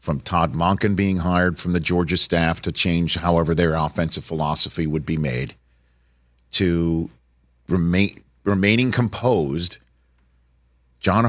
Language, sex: English, male